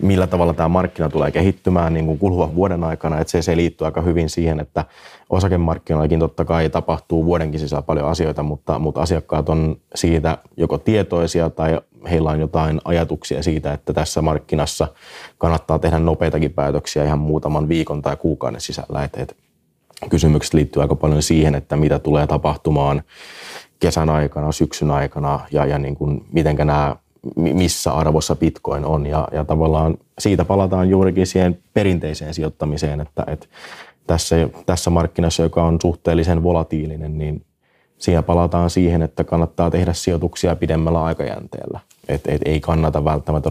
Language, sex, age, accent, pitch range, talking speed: Finnish, male, 30-49, native, 75-85 Hz, 140 wpm